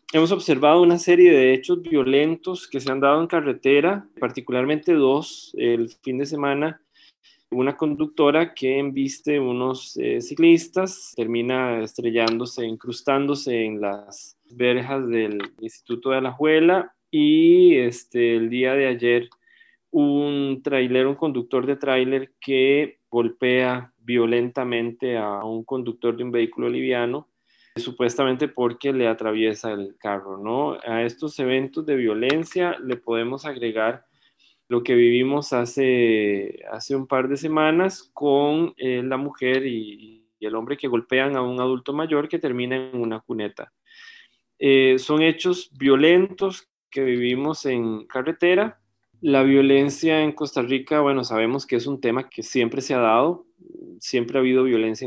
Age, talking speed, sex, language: 20-39, 140 wpm, male, Spanish